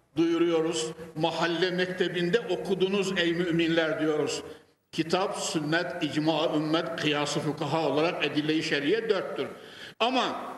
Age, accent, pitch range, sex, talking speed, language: 60-79, native, 165-245 Hz, male, 95 wpm, Turkish